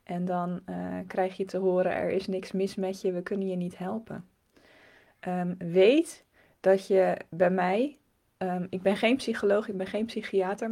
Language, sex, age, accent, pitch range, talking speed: Dutch, female, 20-39, Dutch, 185-210 Hz, 175 wpm